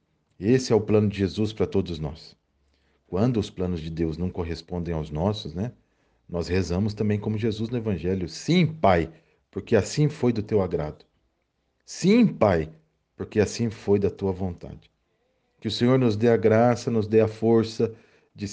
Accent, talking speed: Brazilian, 175 wpm